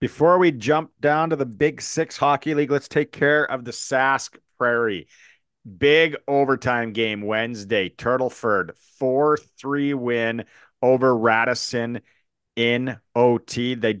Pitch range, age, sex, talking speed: 110-145 Hz, 40-59, male, 125 wpm